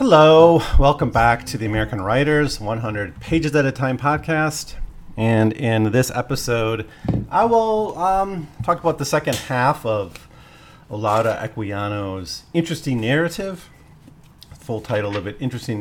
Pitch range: 100-140 Hz